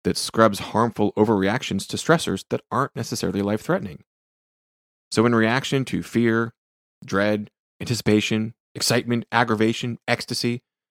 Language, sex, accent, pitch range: English, male, American, 105-150 Hz